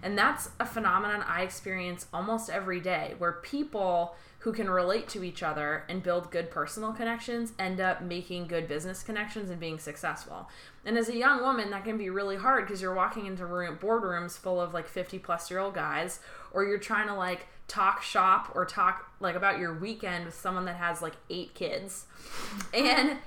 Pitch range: 170-210 Hz